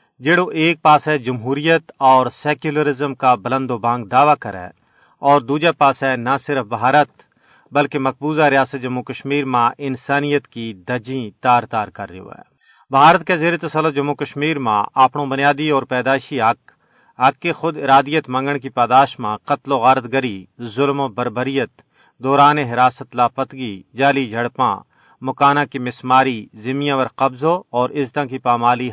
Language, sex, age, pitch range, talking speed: Urdu, male, 40-59, 125-145 Hz, 160 wpm